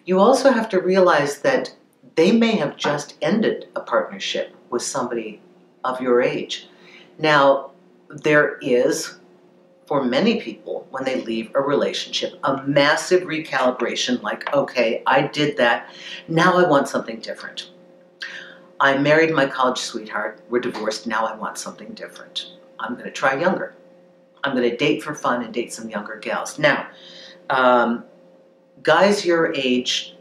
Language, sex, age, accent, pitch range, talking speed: English, female, 50-69, American, 125-175 Hz, 145 wpm